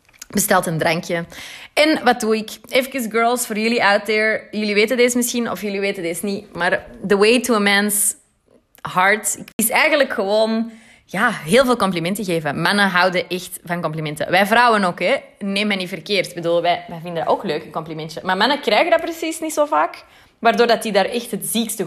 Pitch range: 185-240 Hz